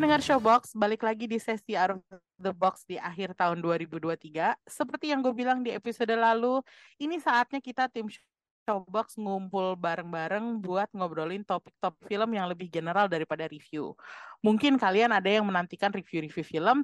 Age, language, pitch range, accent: 20-39, Indonesian, 180-255 Hz, native